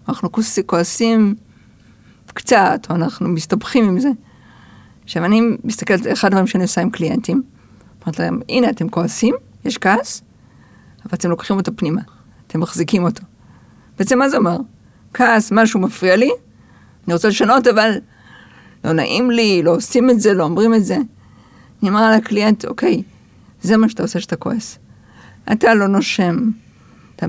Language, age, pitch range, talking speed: Hebrew, 50-69, 180-230 Hz, 155 wpm